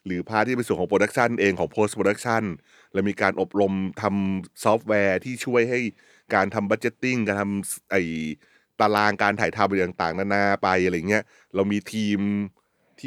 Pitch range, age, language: 95-115 Hz, 20-39, Thai